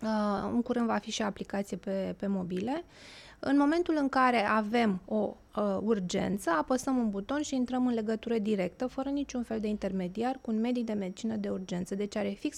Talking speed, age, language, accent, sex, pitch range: 200 wpm, 20-39, Romanian, native, female, 200-240 Hz